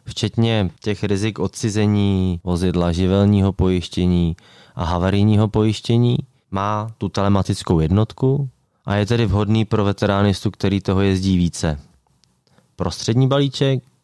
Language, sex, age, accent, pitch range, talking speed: Czech, male, 20-39, native, 90-115 Hz, 110 wpm